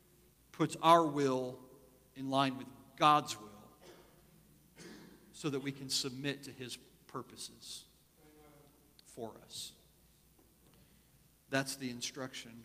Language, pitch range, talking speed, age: English, 120-150 Hz, 100 wpm, 50-69